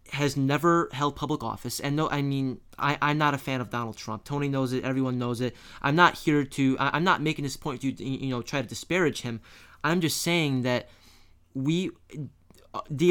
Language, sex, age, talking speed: English, male, 20-39, 210 wpm